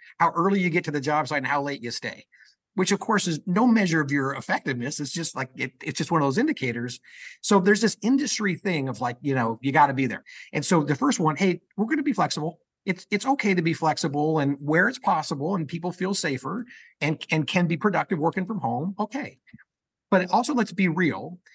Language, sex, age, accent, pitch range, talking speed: English, male, 50-69, American, 145-190 Hz, 240 wpm